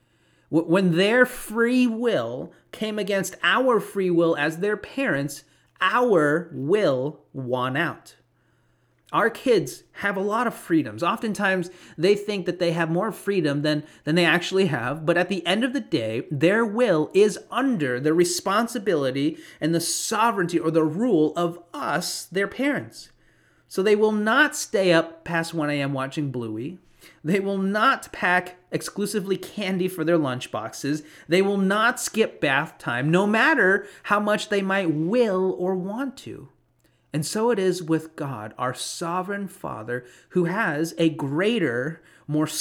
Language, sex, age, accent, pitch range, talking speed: English, male, 30-49, American, 155-205 Hz, 155 wpm